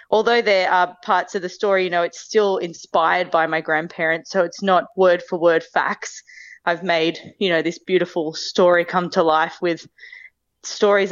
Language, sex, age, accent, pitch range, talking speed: Dutch, female, 20-39, Australian, 170-195 Hz, 185 wpm